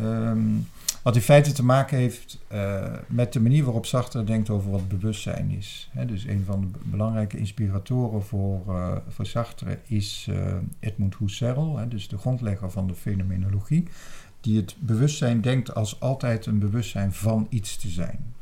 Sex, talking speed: male, 160 wpm